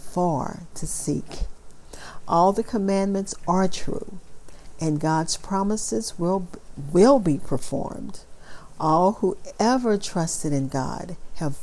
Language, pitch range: English, 150-185 Hz